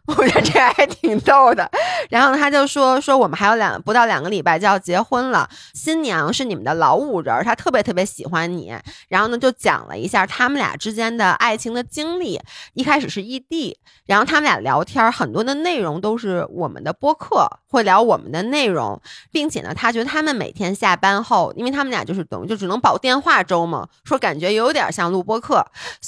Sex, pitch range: female, 185-255 Hz